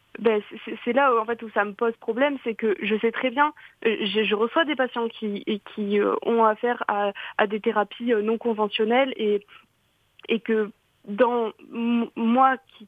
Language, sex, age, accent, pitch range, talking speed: French, female, 20-39, French, 205-250 Hz, 190 wpm